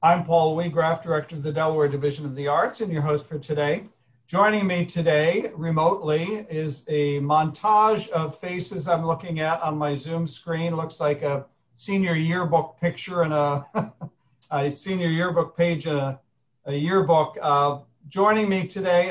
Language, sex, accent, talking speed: English, male, American, 160 wpm